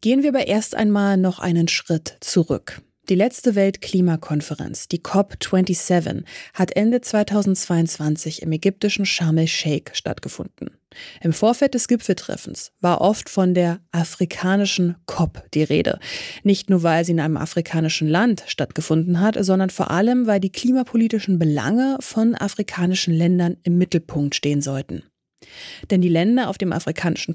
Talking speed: 140 wpm